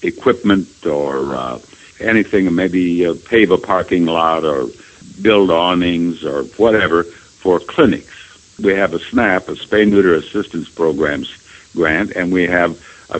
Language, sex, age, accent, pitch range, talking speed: English, male, 60-79, American, 90-120 Hz, 135 wpm